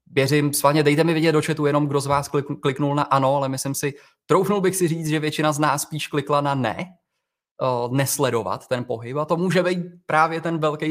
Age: 20-39